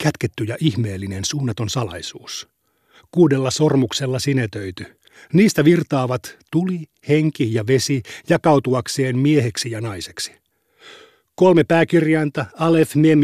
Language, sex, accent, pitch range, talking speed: Finnish, male, native, 125-155 Hz, 100 wpm